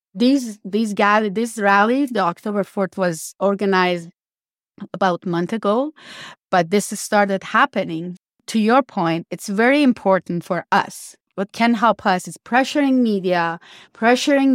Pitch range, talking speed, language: 190-235 Hz, 140 wpm, English